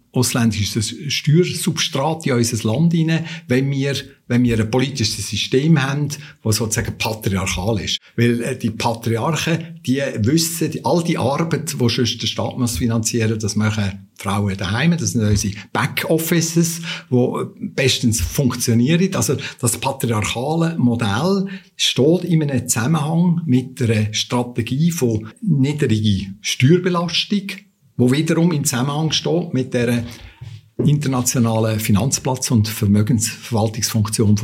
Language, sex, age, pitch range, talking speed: German, male, 60-79, 110-145 Hz, 120 wpm